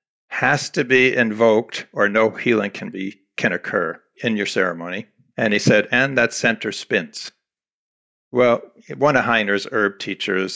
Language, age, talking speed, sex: English, 50-69, 155 wpm, male